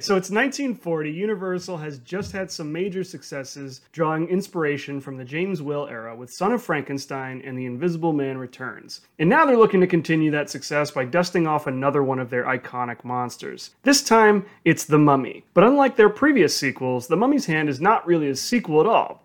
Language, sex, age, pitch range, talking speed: English, male, 30-49, 140-190 Hz, 195 wpm